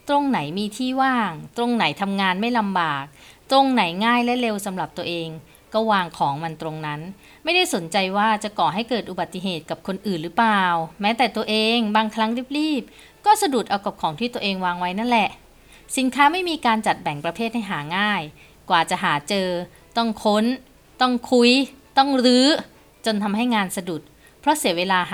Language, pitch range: Thai, 180-235 Hz